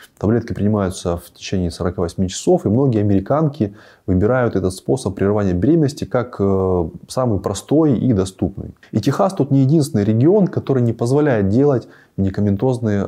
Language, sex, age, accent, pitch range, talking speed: Russian, male, 20-39, native, 100-135 Hz, 140 wpm